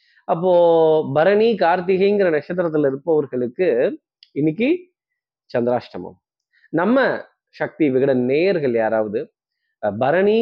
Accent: native